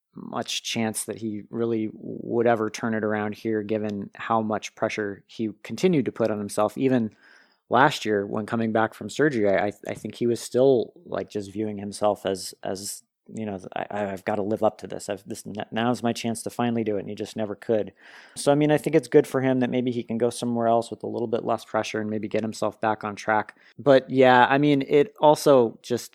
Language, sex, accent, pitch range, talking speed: English, male, American, 110-125 Hz, 230 wpm